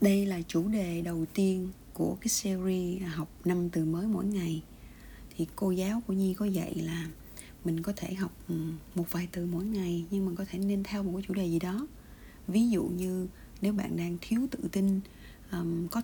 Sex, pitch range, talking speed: female, 170-195 Hz, 200 wpm